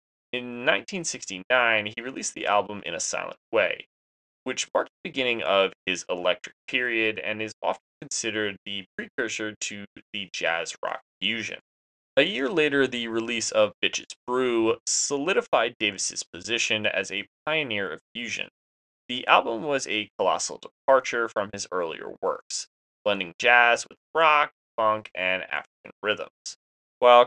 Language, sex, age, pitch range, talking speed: English, male, 20-39, 100-120 Hz, 140 wpm